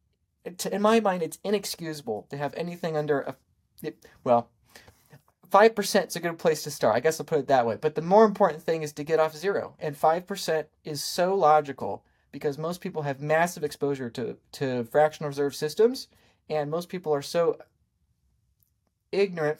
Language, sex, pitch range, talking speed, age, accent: English, male, 135-165 Hz, 175 wpm, 30-49, American